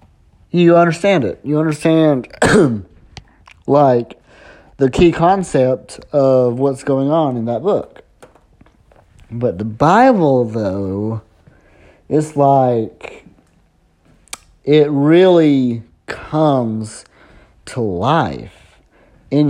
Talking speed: 85 wpm